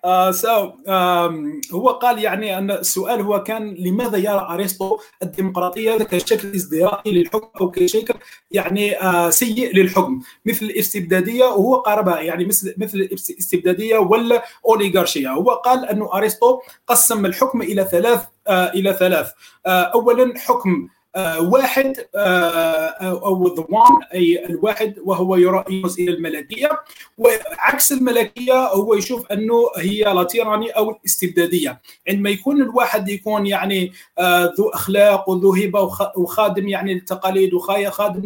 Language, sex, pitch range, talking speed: Arabic, male, 185-225 Hz, 125 wpm